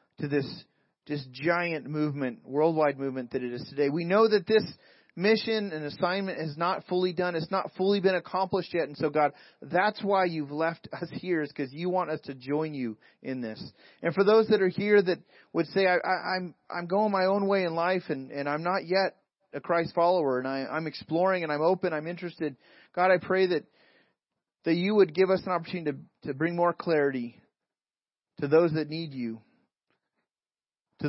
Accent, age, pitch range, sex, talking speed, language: American, 30-49, 135-175 Hz, male, 205 wpm, English